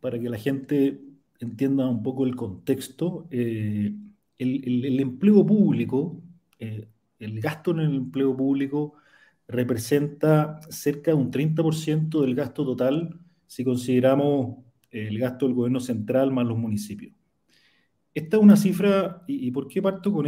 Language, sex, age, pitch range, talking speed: Spanish, male, 40-59, 120-155 Hz, 150 wpm